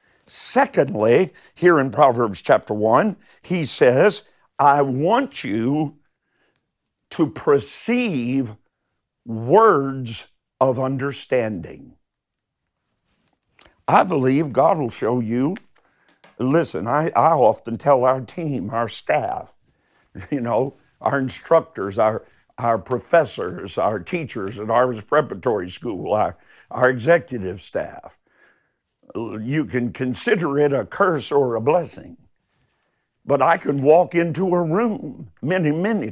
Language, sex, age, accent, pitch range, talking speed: English, male, 50-69, American, 125-165 Hz, 110 wpm